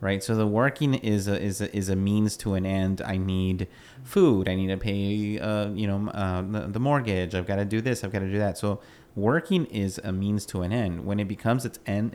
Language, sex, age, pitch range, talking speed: English, male, 30-49, 95-110 Hz, 250 wpm